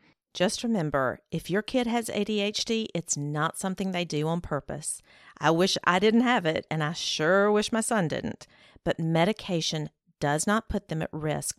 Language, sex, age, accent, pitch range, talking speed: English, female, 40-59, American, 155-205 Hz, 180 wpm